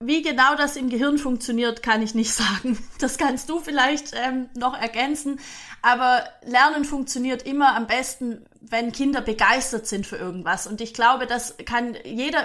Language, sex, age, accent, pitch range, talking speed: German, female, 20-39, German, 230-290 Hz, 170 wpm